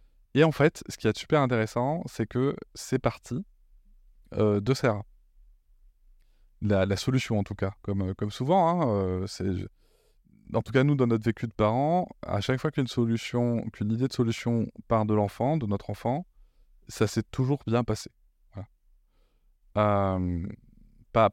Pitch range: 100-125 Hz